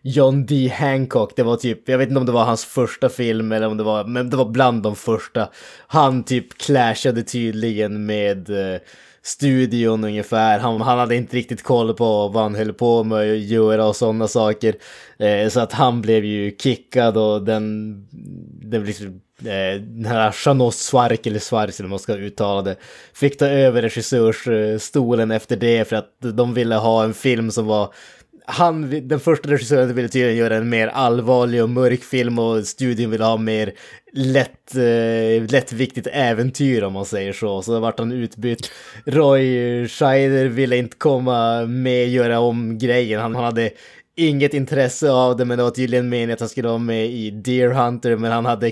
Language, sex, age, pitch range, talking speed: Swedish, male, 20-39, 110-125 Hz, 185 wpm